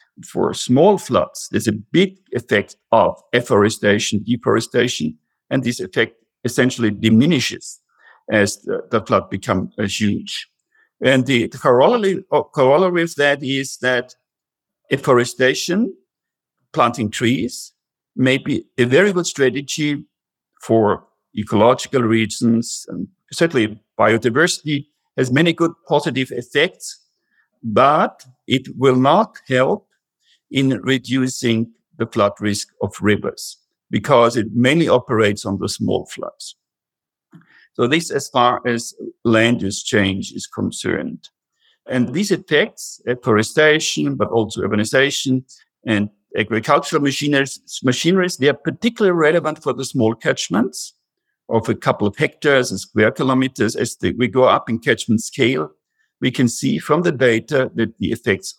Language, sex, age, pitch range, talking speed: English, male, 60-79, 110-145 Hz, 130 wpm